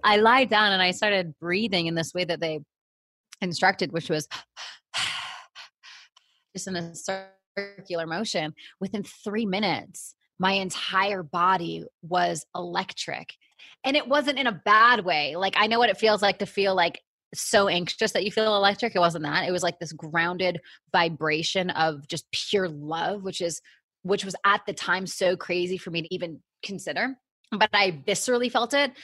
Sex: female